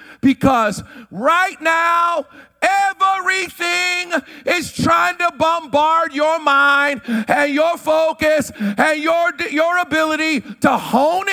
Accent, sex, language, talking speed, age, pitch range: American, male, English, 100 wpm, 50-69, 220-325 Hz